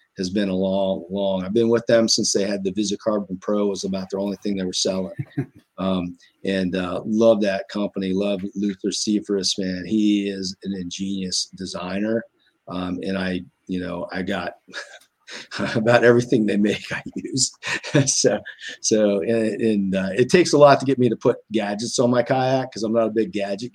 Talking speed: 190 wpm